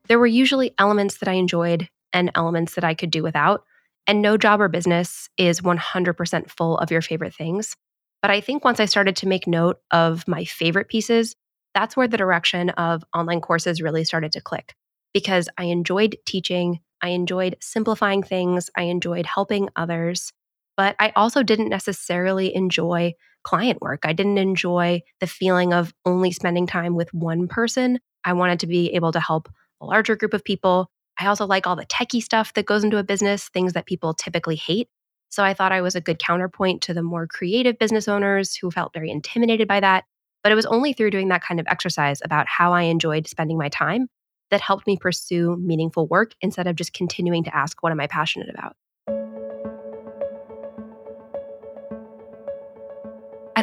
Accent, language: American, English